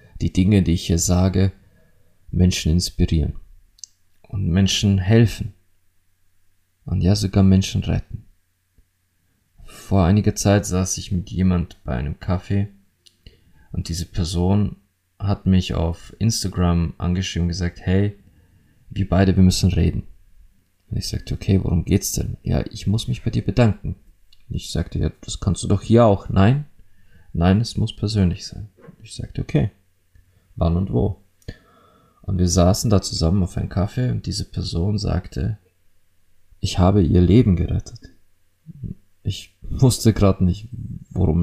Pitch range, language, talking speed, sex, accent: 90-100 Hz, German, 145 wpm, male, German